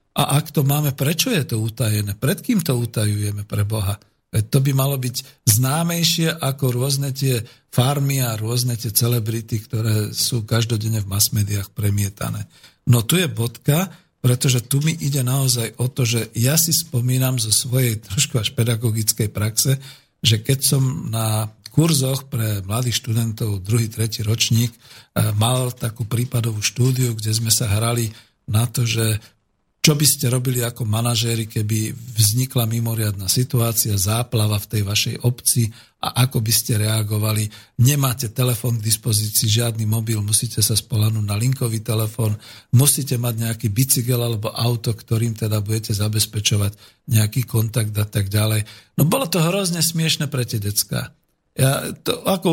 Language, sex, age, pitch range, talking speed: Slovak, male, 50-69, 110-130 Hz, 155 wpm